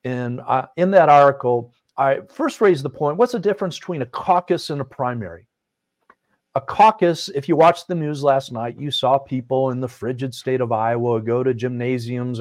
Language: English